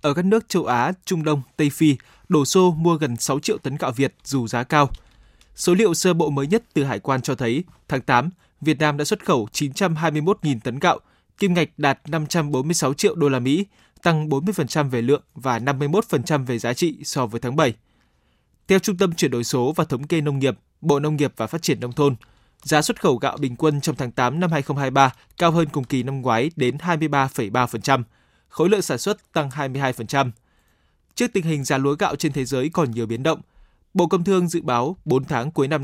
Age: 20-39